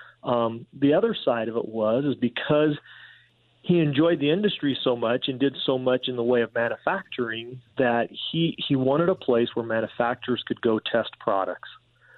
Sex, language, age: male, English, 40-59